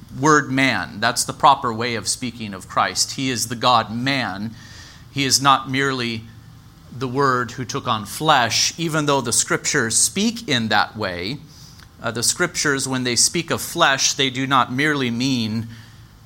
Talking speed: 170 wpm